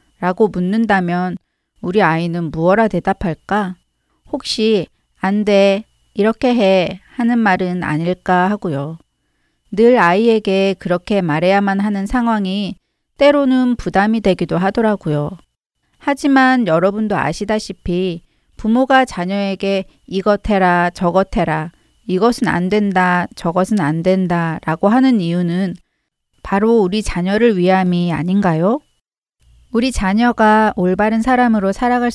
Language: Korean